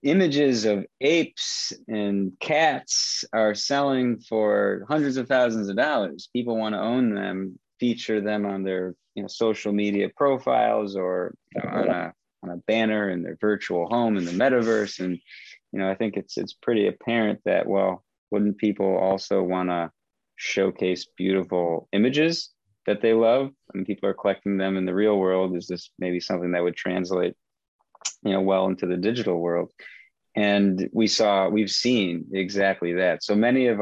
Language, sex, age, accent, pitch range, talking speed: English, male, 30-49, American, 95-110 Hz, 170 wpm